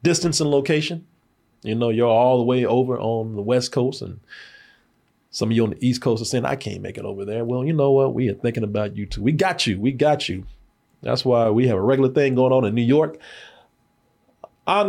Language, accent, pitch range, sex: English, American, 115-160 Hz, male